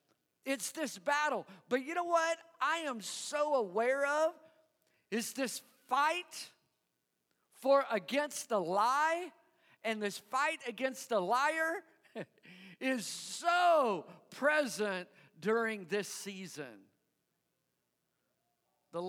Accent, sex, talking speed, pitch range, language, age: American, male, 100 wpm, 205-285 Hz, English, 50-69